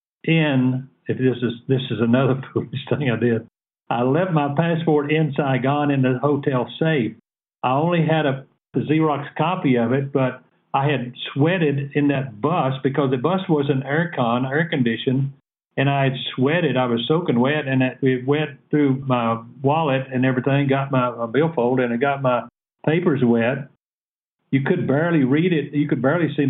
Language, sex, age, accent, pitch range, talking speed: English, male, 50-69, American, 125-150 Hz, 180 wpm